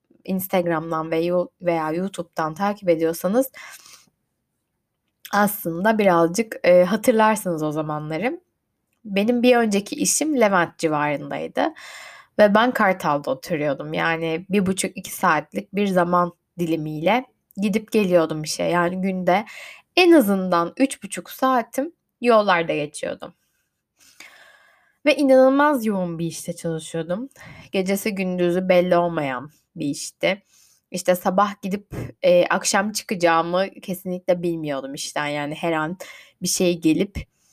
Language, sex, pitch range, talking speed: Turkish, female, 170-220 Hz, 105 wpm